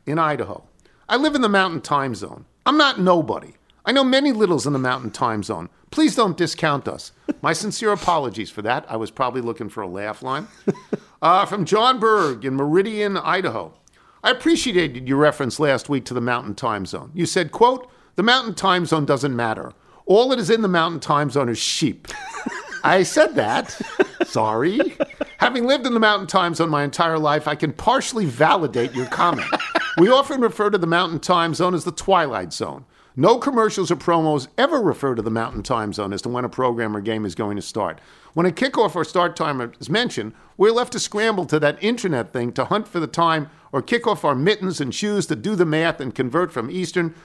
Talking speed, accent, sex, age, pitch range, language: 210 wpm, American, male, 50-69, 130-205 Hz, English